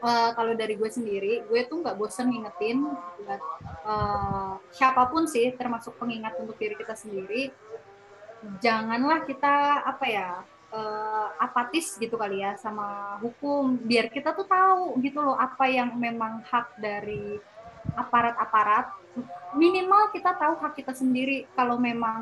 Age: 20-39